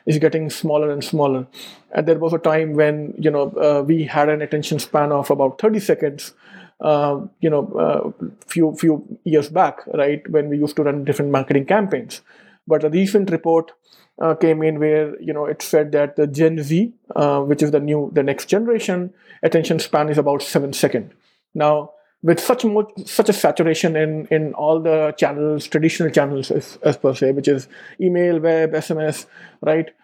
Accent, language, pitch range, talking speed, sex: Indian, English, 150-175 Hz, 190 wpm, male